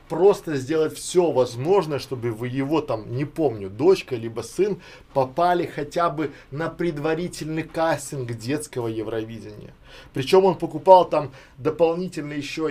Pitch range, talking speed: 130-165 Hz, 130 wpm